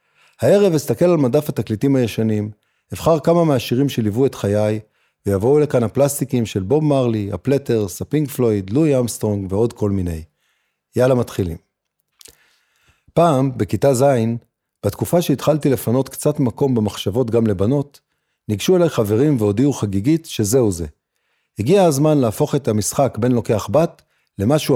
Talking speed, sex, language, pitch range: 135 wpm, male, Hebrew, 105-150 Hz